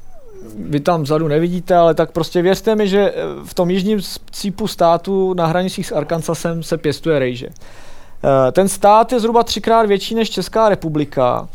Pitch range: 140-185 Hz